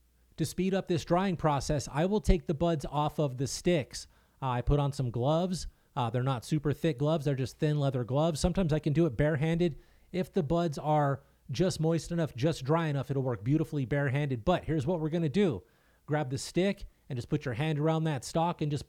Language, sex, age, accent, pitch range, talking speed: English, male, 30-49, American, 135-165 Hz, 225 wpm